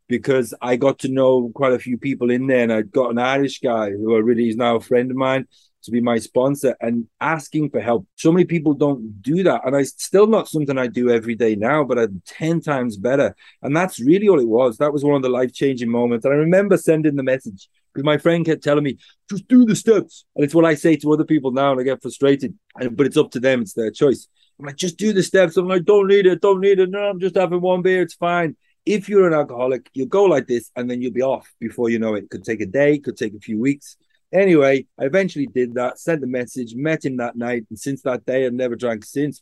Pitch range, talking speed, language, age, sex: 125-160 Hz, 265 wpm, English, 30-49, male